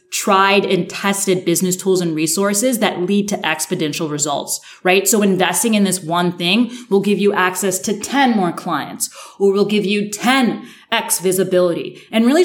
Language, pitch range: English, 180-225 Hz